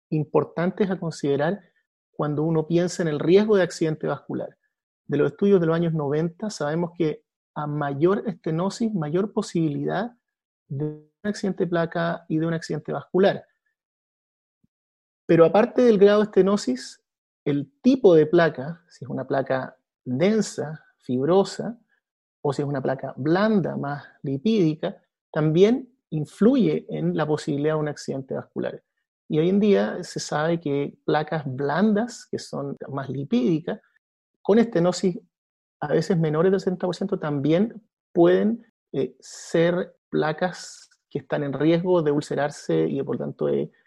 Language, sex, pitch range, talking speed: Spanish, male, 150-200 Hz, 140 wpm